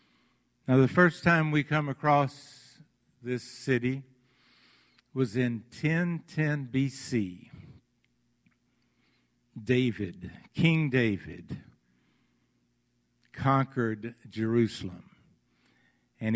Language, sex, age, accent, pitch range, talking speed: English, male, 60-79, American, 115-145 Hz, 70 wpm